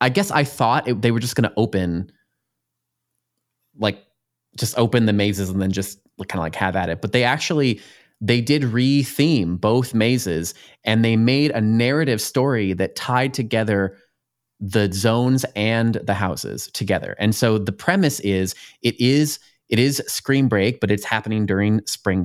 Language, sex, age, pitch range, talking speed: English, male, 20-39, 100-125 Hz, 170 wpm